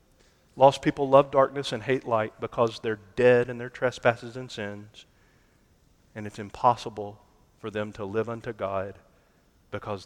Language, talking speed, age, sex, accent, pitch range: English, 150 wpm, 40-59, male, American, 110-140 Hz